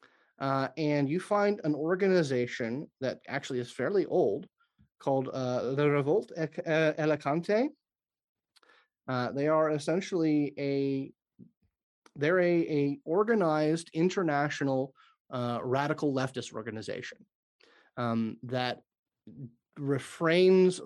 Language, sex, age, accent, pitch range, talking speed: English, male, 30-49, American, 125-155 Hz, 90 wpm